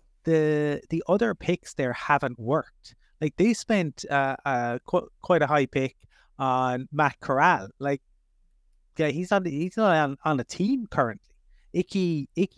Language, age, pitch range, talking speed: English, 30-49, 130-175 Hz, 155 wpm